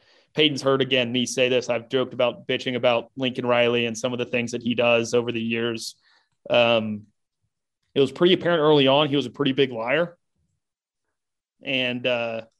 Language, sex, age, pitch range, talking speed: English, male, 30-49, 125-155 Hz, 180 wpm